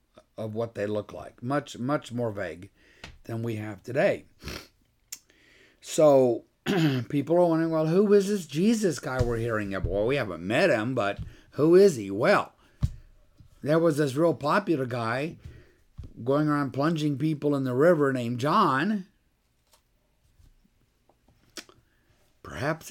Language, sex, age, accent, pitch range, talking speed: English, male, 60-79, American, 120-170 Hz, 135 wpm